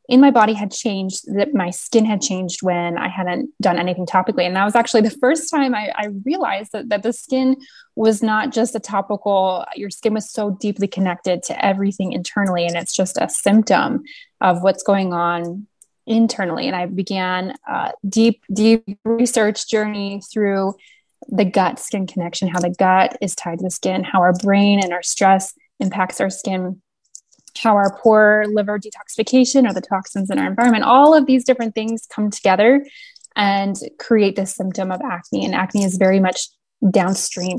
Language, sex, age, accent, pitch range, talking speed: English, female, 20-39, American, 190-230 Hz, 180 wpm